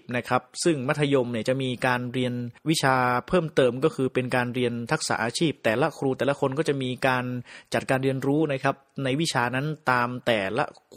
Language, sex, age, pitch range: Thai, male, 30-49, 125-145 Hz